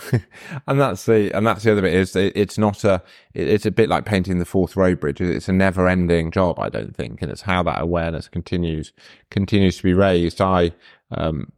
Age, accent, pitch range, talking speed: 30-49, British, 85-105 Hz, 205 wpm